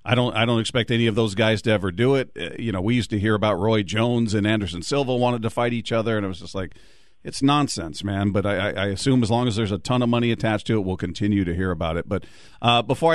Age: 40-59